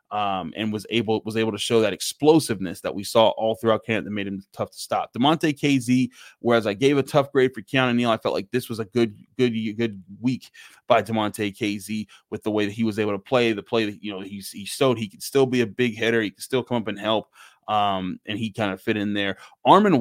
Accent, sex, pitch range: American, male, 110-130 Hz